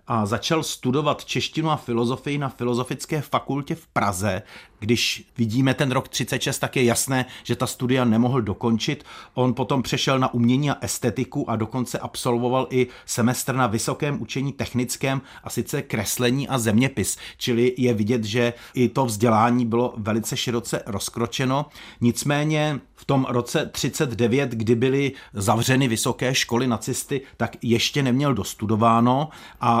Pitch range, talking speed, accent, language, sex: 115-140 Hz, 145 wpm, native, Czech, male